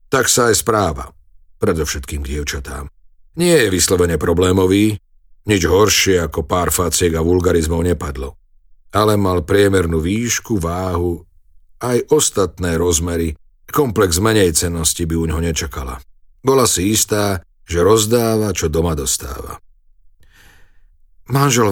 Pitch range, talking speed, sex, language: 75-95 Hz, 115 wpm, male, Slovak